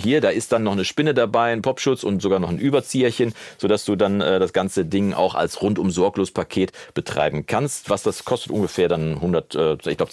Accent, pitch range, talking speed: German, 95-125 Hz, 220 wpm